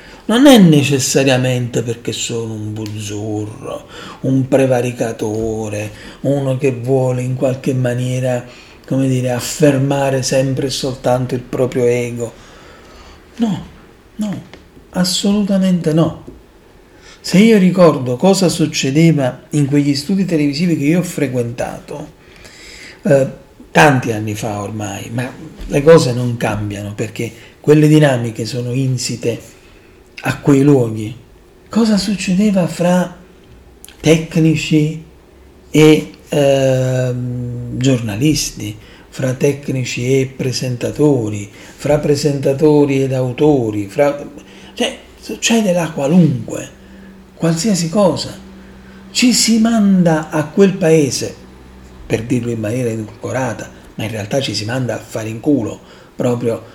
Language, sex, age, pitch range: Italian, male, 40-59, 115-155 Hz